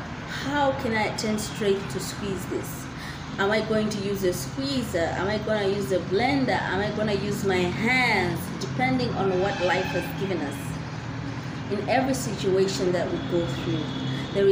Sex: female